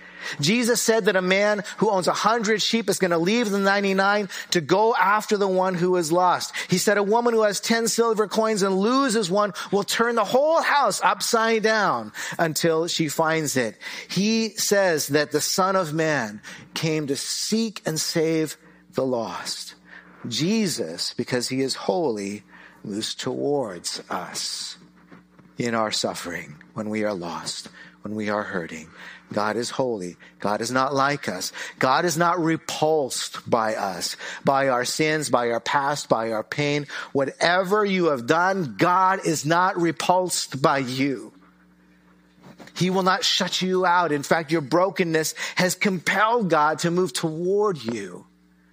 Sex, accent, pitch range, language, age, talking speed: male, American, 135-200 Hz, English, 40-59, 160 wpm